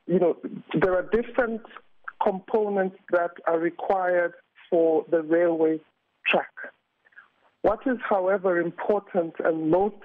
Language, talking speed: English, 115 wpm